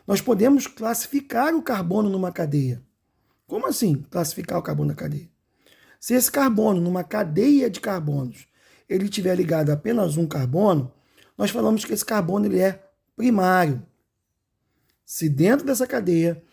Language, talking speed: Portuguese, 145 wpm